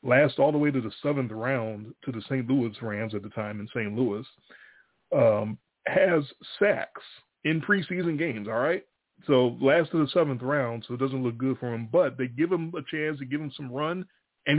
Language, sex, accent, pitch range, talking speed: English, male, American, 115-140 Hz, 215 wpm